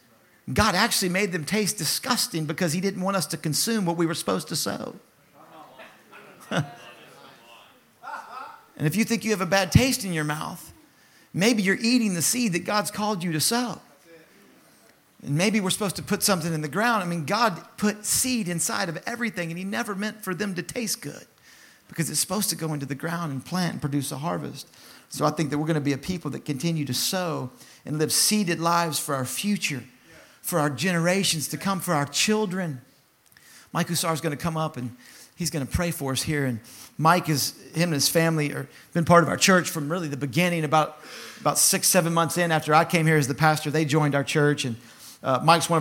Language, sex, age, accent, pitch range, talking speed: English, male, 50-69, American, 155-195 Hz, 215 wpm